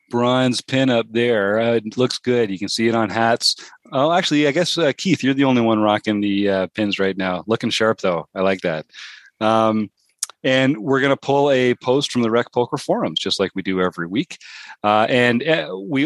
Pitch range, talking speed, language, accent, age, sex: 100-125 Hz, 215 wpm, English, American, 30-49, male